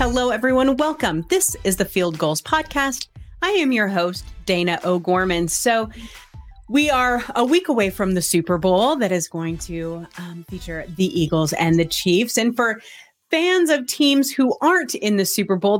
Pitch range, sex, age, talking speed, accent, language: 170-250 Hz, female, 30-49, 180 wpm, American, English